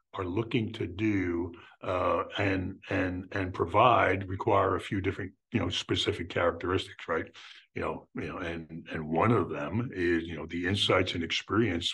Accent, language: American, English